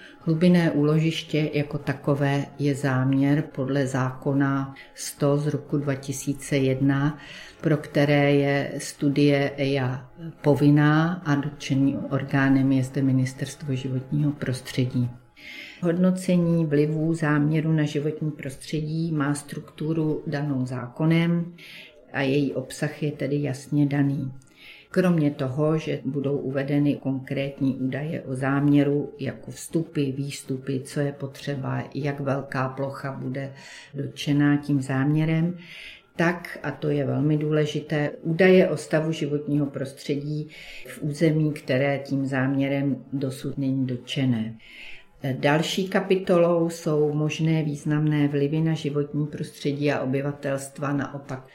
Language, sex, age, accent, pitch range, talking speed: Czech, female, 50-69, native, 135-150 Hz, 110 wpm